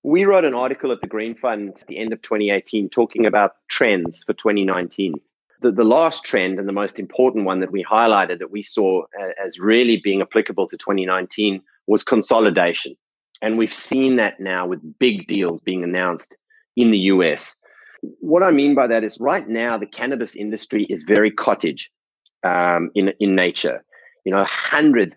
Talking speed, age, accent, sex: 180 wpm, 30-49, Australian, male